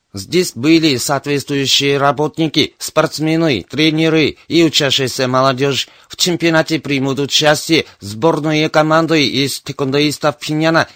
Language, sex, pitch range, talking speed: Russian, male, 140-160 Hz, 100 wpm